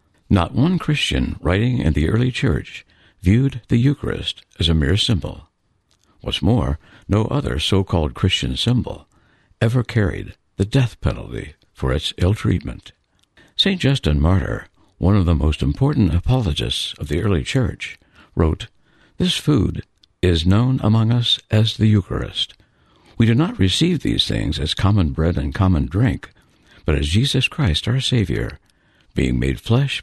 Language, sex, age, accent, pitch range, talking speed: English, male, 60-79, American, 85-120 Hz, 150 wpm